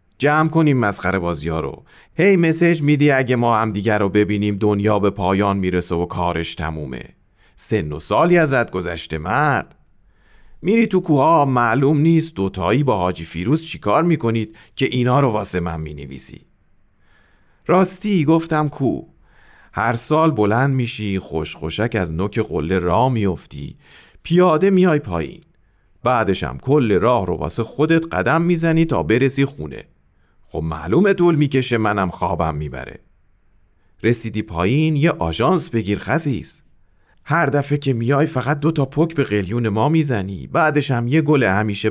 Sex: male